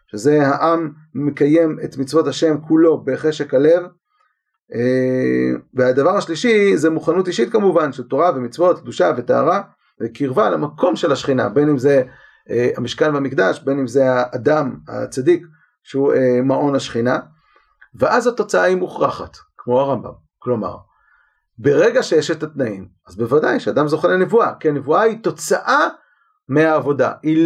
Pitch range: 130-170 Hz